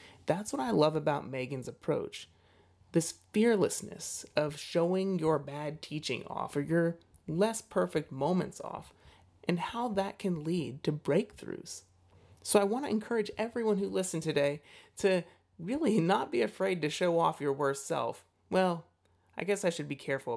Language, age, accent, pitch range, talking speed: English, 30-49, American, 140-190 Hz, 160 wpm